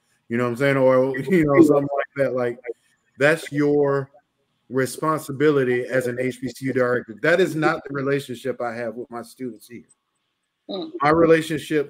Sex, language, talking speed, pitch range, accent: male, English, 160 wpm, 125-150 Hz, American